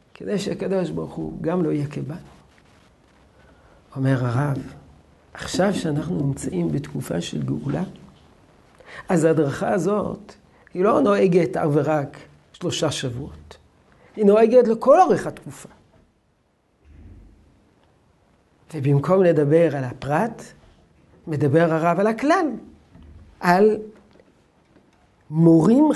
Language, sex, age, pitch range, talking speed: Hebrew, male, 60-79, 140-205 Hz, 95 wpm